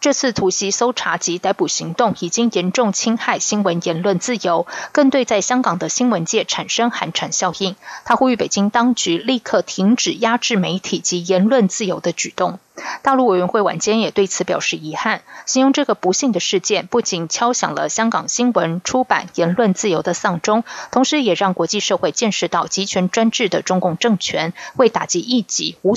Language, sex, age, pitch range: Chinese, female, 20-39, 180-240 Hz